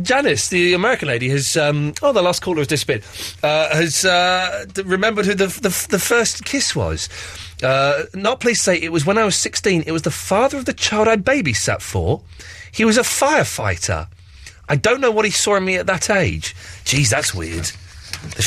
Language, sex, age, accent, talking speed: English, male, 30-49, British, 200 wpm